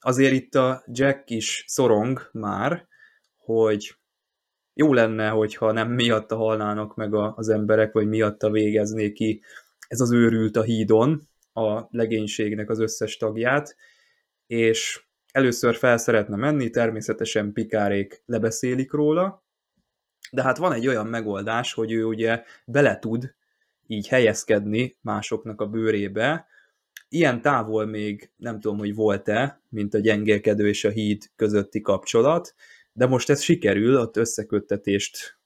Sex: male